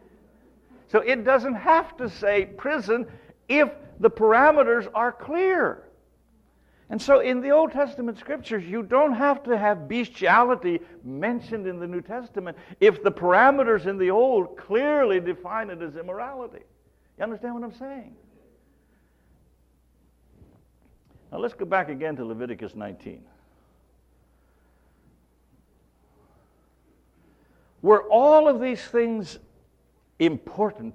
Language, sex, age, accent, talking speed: English, male, 60-79, American, 115 wpm